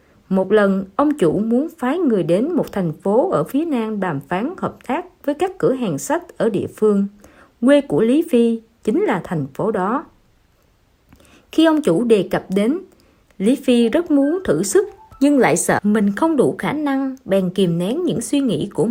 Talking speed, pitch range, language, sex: 195 wpm, 185-280 Hz, Vietnamese, female